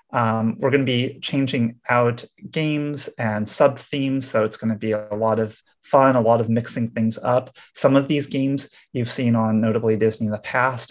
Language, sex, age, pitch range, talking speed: English, male, 30-49, 110-125 Hz, 205 wpm